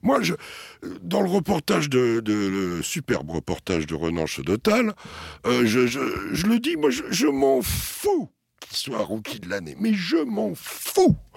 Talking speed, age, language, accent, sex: 175 wpm, 60-79, French, French, male